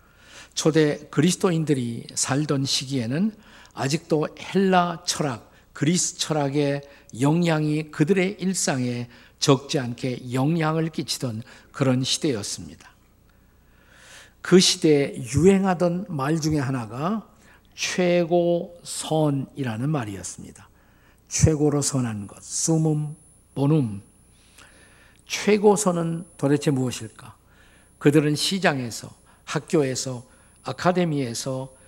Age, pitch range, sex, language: 50-69, 130-170 Hz, male, Korean